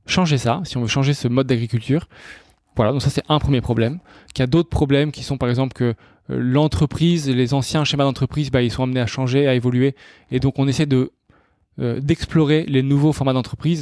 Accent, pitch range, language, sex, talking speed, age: French, 120-140 Hz, French, male, 215 wpm, 20-39